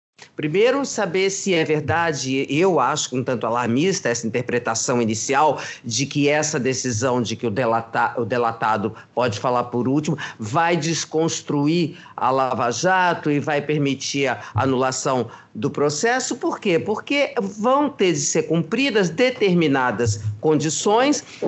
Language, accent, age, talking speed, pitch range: Portuguese, Brazilian, 50-69, 135 wpm, 130-200 Hz